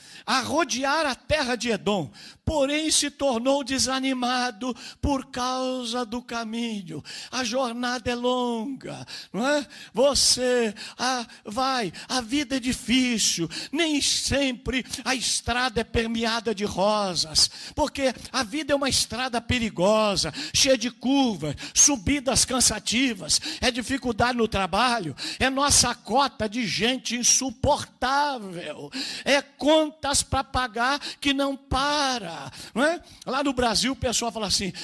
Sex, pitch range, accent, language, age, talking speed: male, 230-280 Hz, Brazilian, Portuguese, 60-79, 125 wpm